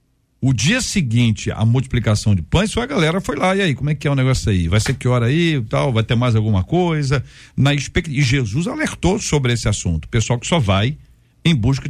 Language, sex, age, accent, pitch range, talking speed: Portuguese, male, 50-69, Brazilian, 115-160 Hz, 215 wpm